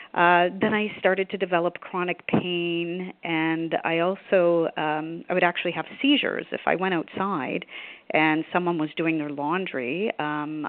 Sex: female